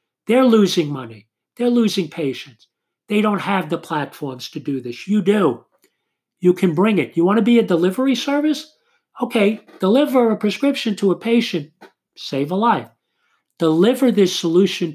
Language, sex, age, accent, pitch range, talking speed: English, male, 50-69, American, 155-230 Hz, 160 wpm